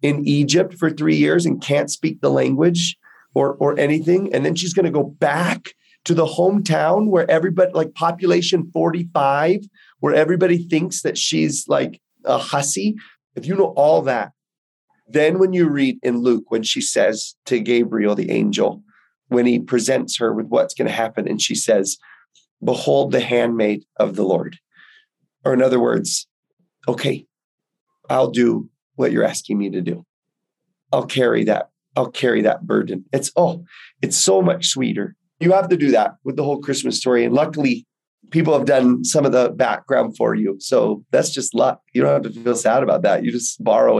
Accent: American